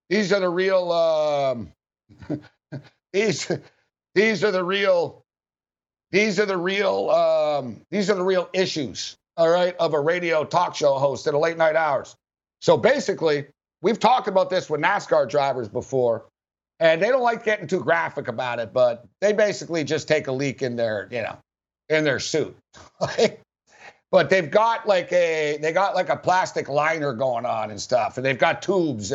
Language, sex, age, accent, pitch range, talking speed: English, male, 60-79, American, 140-195 Hz, 175 wpm